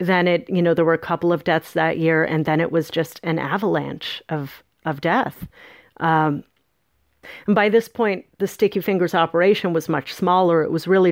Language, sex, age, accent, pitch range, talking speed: English, female, 40-59, American, 155-195 Hz, 200 wpm